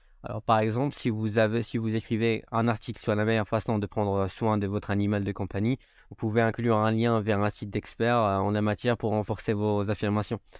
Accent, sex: French, male